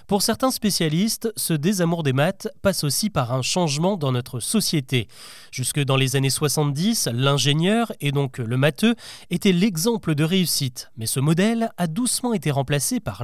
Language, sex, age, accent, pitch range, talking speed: French, male, 30-49, French, 140-200 Hz, 170 wpm